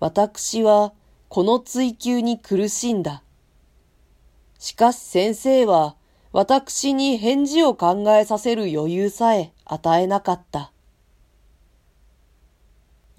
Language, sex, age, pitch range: Japanese, female, 40-59, 150-225 Hz